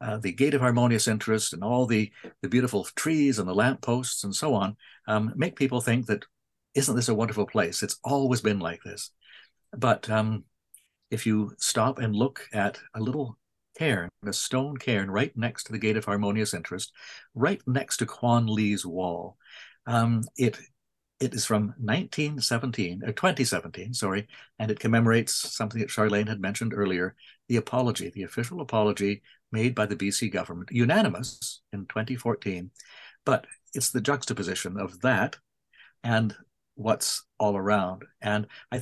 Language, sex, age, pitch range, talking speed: English, male, 60-79, 100-125 Hz, 160 wpm